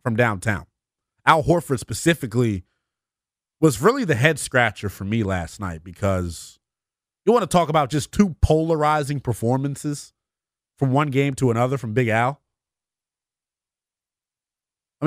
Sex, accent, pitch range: male, American, 110-160 Hz